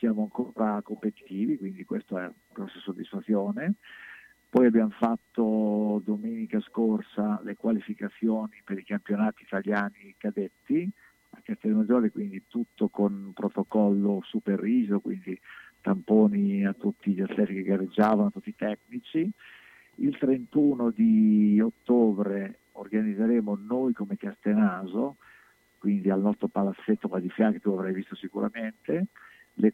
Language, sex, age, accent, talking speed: Italian, male, 50-69, native, 125 wpm